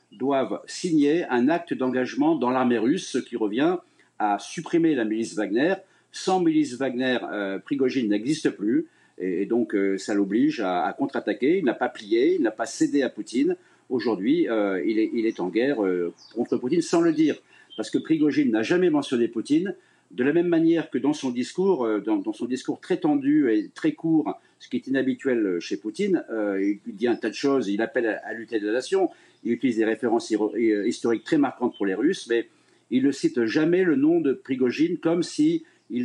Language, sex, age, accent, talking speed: French, male, 50-69, French, 205 wpm